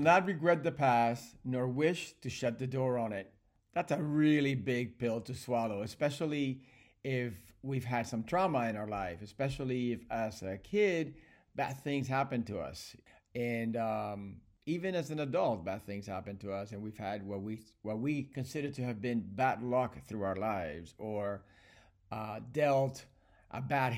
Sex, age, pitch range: male, 40-59, 110-155 Hz